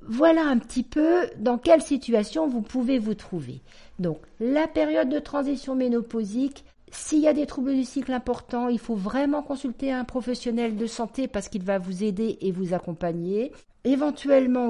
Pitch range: 175-265 Hz